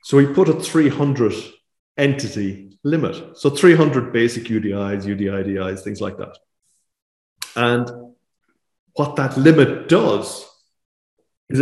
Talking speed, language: 110 wpm, English